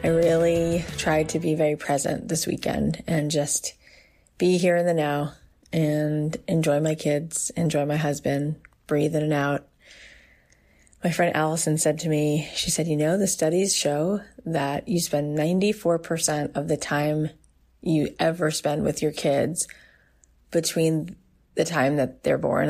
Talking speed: 155 wpm